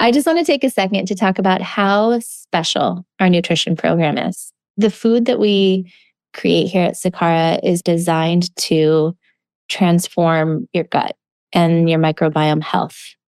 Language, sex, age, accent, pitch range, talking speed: English, female, 20-39, American, 175-225 Hz, 150 wpm